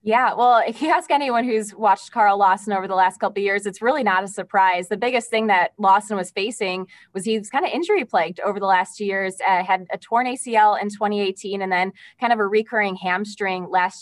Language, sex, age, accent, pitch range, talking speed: English, female, 20-39, American, 180-210 Hz, 230 wpm